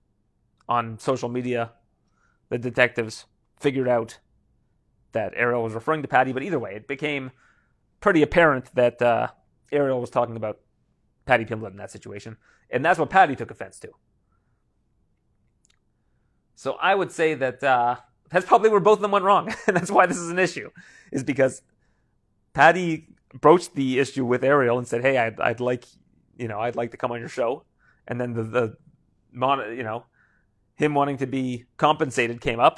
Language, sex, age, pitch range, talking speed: English, male, 30-49, 120-150 Hz, 175 wpm